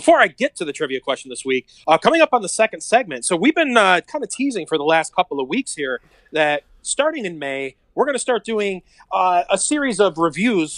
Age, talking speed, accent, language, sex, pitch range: 30-49, 240 wpm, American, English, male, 160-250 Hz